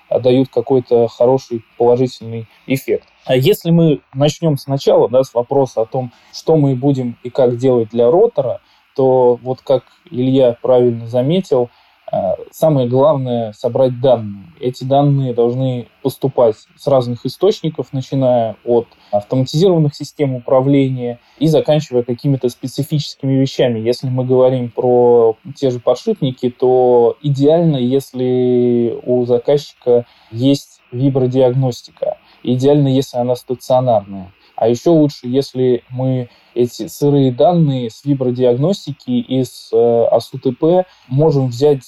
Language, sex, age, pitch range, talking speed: Russian, male, 20-39, 120-140 Hz, 120 wpm